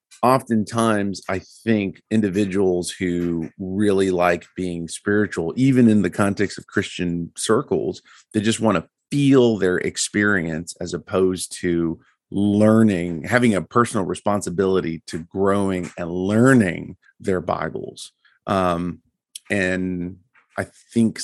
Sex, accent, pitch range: male, American, 90-120 Hz